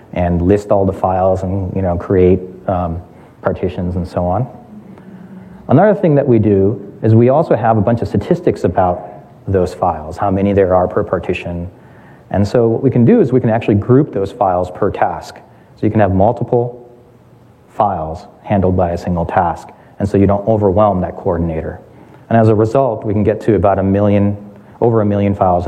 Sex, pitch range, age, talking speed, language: male, 95-120 Hz, 30-49, 195 wpm, English